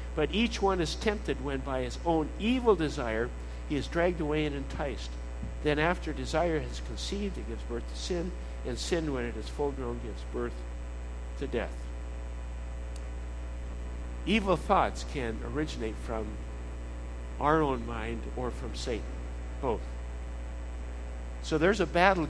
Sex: male